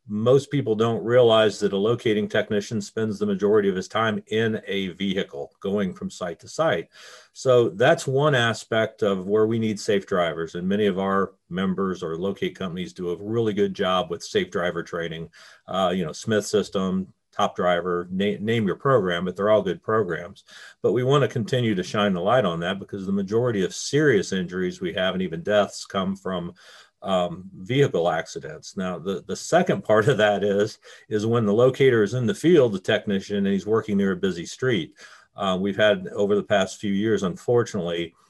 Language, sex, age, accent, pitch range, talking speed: English, male, 50-69, American, 95-115 Hz, 195 wpm